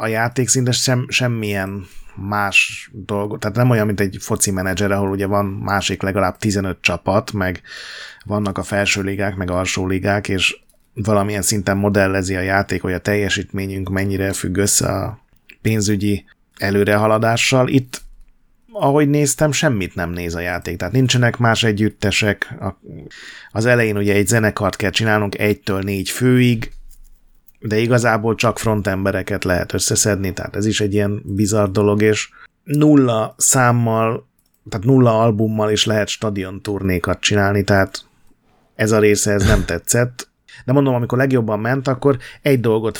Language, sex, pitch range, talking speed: Hungarian, male, 95-115 Hz, 140 wpm